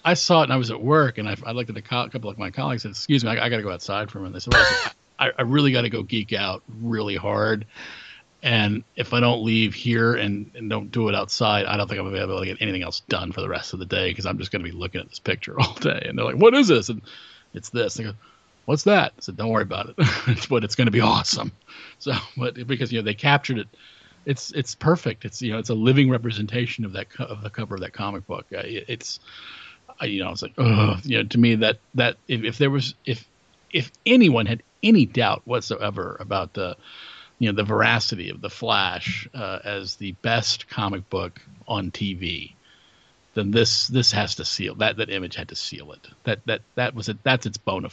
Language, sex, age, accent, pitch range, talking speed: English, male, 40-59, American, 100-120 Hz, 260 wpm